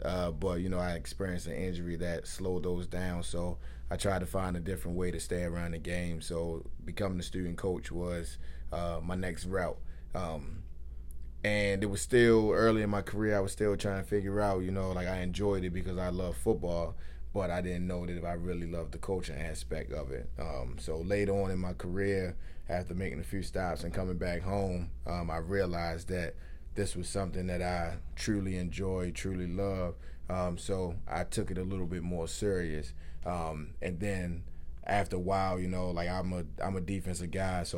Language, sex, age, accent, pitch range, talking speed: English, male, 20-39, American, 85-95 Hz, 205 wpm